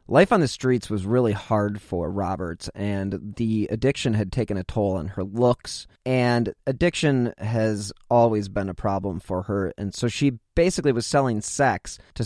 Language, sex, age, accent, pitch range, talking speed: English, male, 30-49, American, 100-125 Hz, 175 wpm